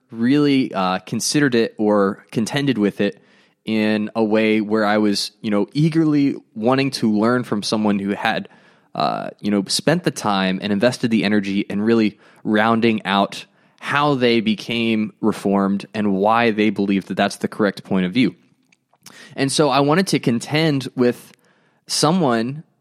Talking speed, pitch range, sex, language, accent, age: 160 wpm, 105-130 Hz, male, English, American, 20-39